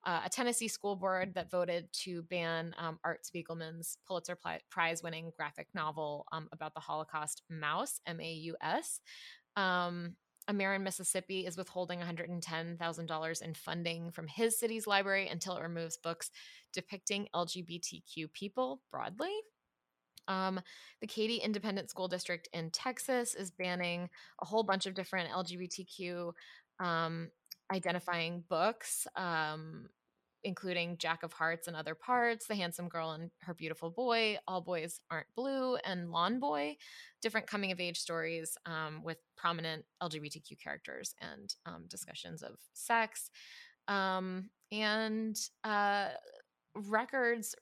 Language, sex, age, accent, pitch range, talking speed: English, female, 20-39, American, 165-205 Hz, 130 wpm